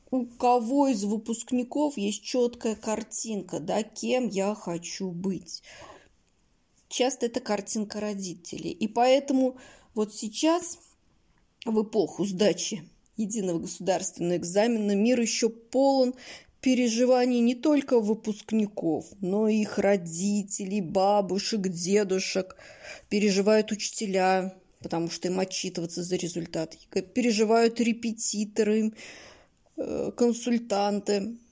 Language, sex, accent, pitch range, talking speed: Russian, female, native, 190-235 Hz, 95 wpm